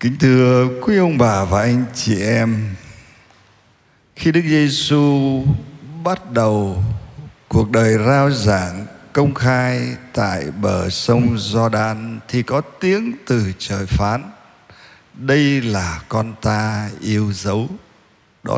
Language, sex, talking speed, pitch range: Vietnamese, male, 120 wpm, 110-155 Hz